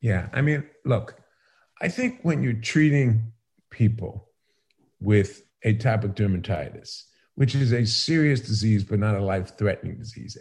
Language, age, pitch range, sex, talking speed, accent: English, 50-69, 110-150 Hz, male, 135 wpm, American